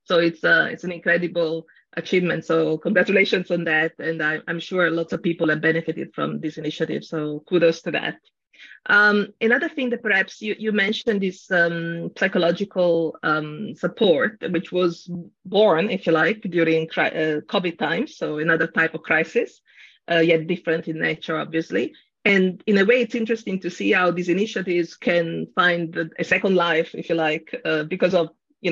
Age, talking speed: 30-49, 180 wpm